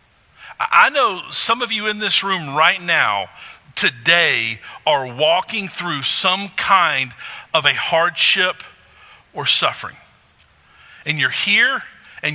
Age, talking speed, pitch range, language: 50-69, 120 wpm, 145-185 Hz, English